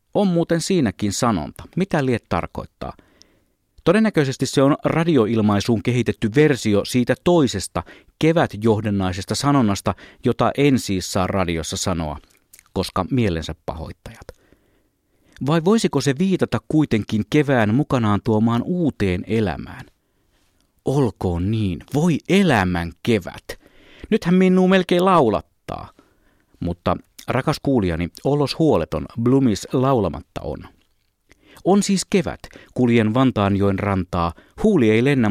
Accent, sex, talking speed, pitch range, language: native, male, 105 wpm, 95-140 Hz, Finnish